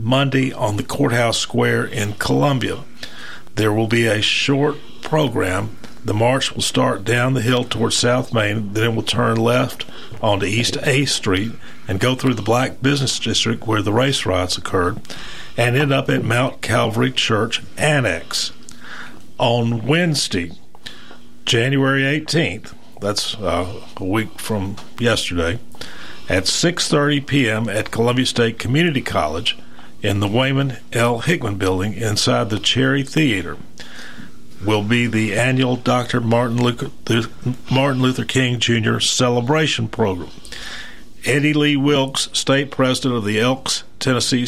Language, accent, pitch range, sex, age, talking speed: English, American, 110-130 Hz, male, 50-69, 135 wpm